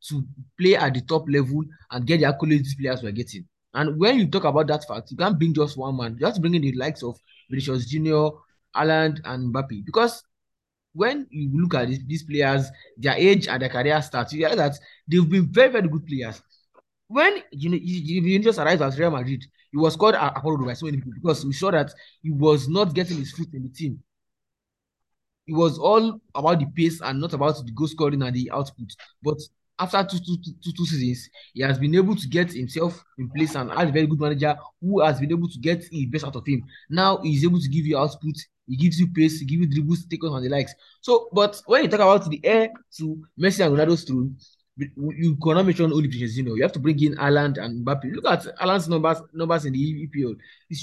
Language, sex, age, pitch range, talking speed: English, male, 20-39, 140-170 Hz, 230 wpm